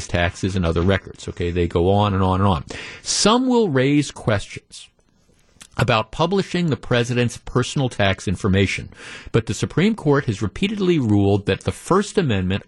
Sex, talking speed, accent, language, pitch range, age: male, 160 wpm, American, English, 105-150 Hz, 50-69